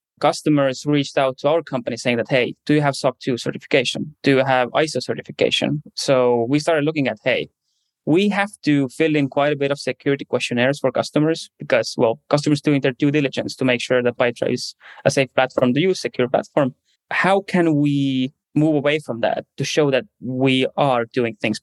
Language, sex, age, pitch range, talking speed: English, male, 20-39, 130-150 Hz, 205 wpm